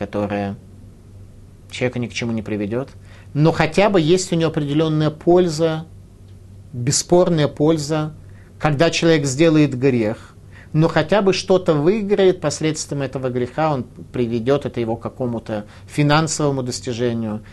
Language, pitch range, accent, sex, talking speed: Russian, 100-155 Hz, native, male, 125 wpm